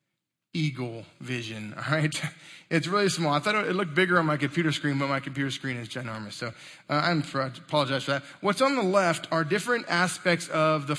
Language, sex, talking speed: English, male, 195 wpm